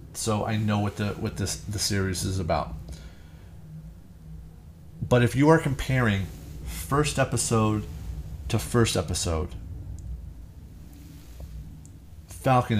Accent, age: American, 30-49